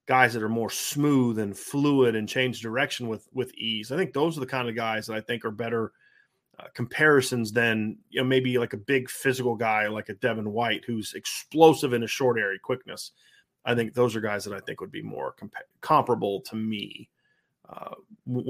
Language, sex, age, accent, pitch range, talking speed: English, male, 40-59, American, 115-140 Hz, 210 wpm